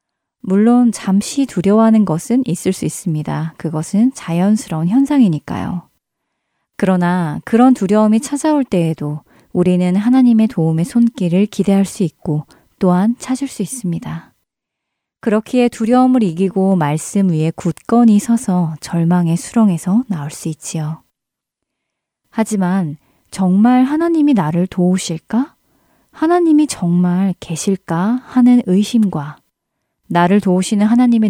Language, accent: Korean, native